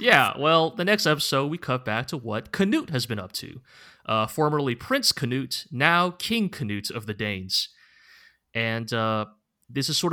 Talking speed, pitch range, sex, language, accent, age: 180 wpm, 110-155 Hz, male, English, American, 30-49